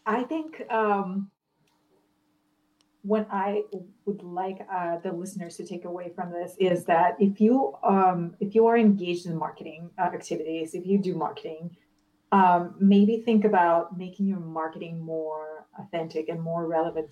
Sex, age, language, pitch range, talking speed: female, 30-49, English, 160-195 Hz, 155 wpm